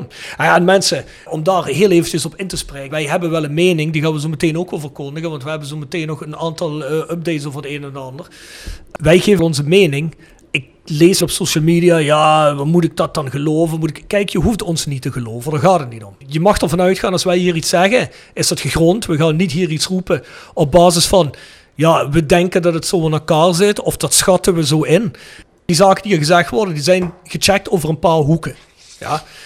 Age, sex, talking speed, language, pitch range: 40-59, male, 245 wpm, Dutch, 150-180 Hz